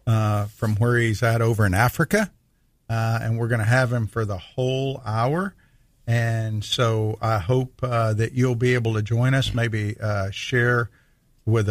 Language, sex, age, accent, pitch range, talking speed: English, male, 50-69, American, 115-135 Hz, 180 wpm